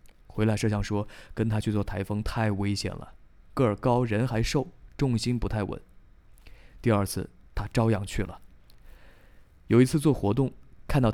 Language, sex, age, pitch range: Chinese, male, 20-39, 95-120 Hz